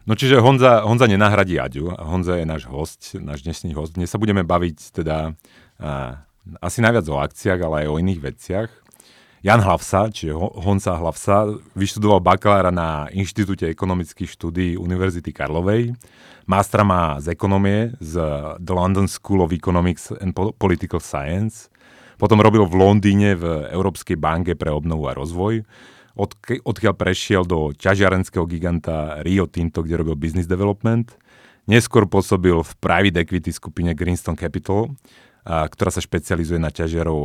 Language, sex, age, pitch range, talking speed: Slovak, male, 30-49, 80-100 Hz, 145 wpm